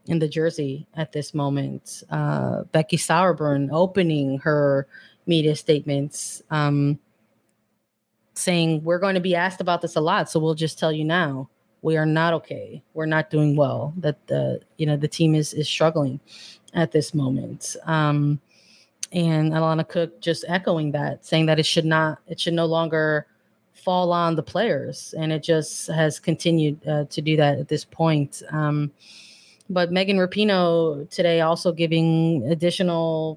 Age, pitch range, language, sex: 30-49, 150-170 Hz, English, female